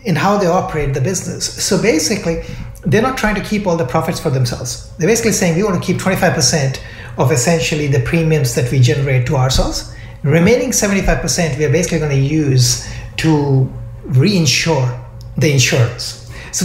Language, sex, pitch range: English, male, 125-170 Hz